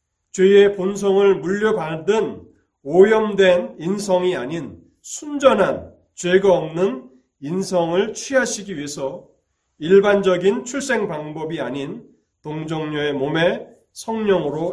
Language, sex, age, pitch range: Korean, male, 40-59, 115-175 Hz